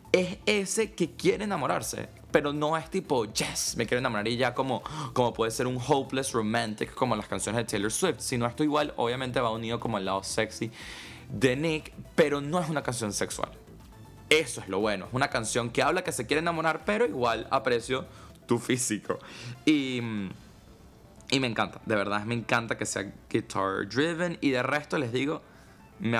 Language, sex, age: Spanish, male, 20-39